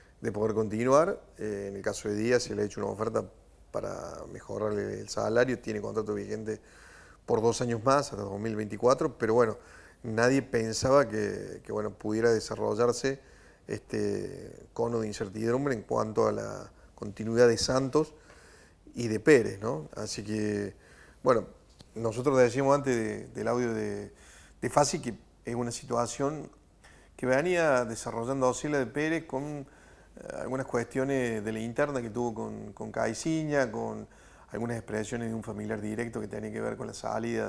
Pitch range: 105-125 Hz